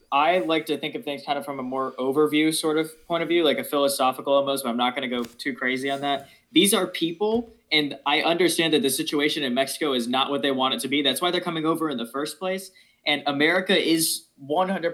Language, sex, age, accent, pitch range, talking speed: English, male, 20-39, American, 130-155 Hz, 255 wpm